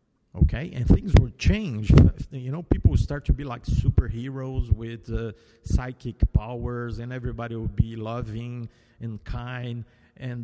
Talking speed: 150 wpm